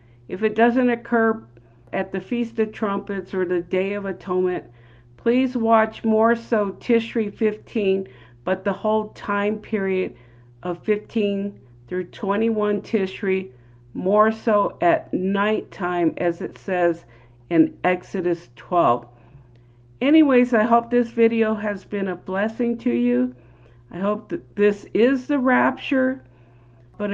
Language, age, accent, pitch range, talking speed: English, 50-69, American, 125-210 Hz, 130 wpm